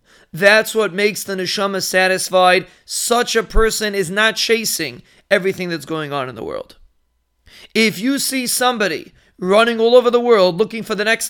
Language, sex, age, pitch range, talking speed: English, male, 40-59, 185-225 Hz, 170 wpm